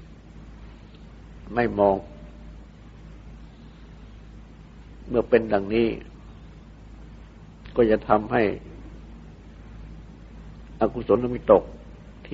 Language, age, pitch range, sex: Thai, 60-79, 80-115 Hz, male